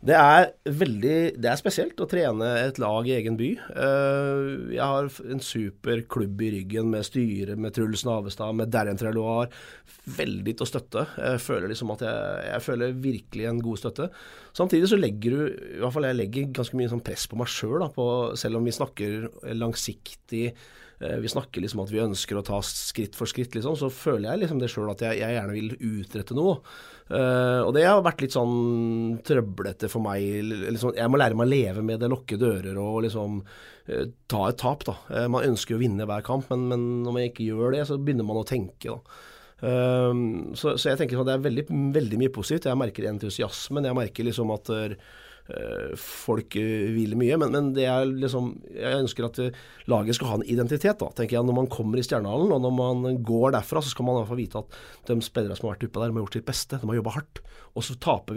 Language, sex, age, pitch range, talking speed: English, male, 30-49, 110-130 Hz, 210 wpm